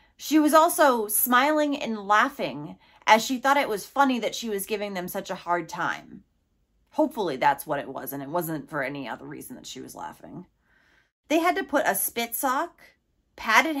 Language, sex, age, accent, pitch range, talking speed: English, female, 30-49, American, 210-285 Hz, 195 wpm